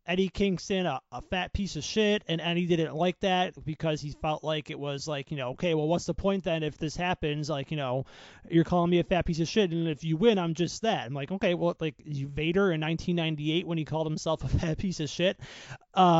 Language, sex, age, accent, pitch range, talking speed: English, male, 30-49, American, 155-185 Hz, 250 wpm